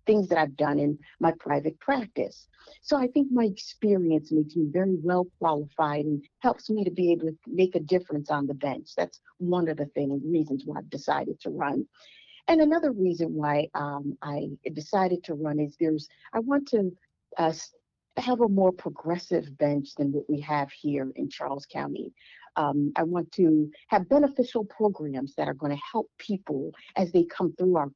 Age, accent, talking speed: 50-69, American, 185 wpm